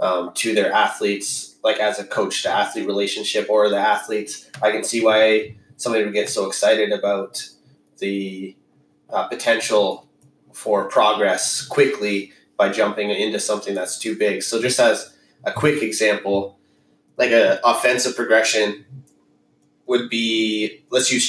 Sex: male